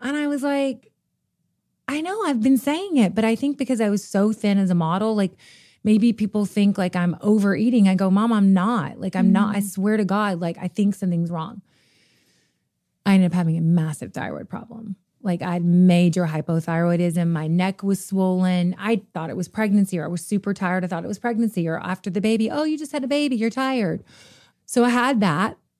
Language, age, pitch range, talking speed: English, 30-49, 180-225 Hz, 215 wpm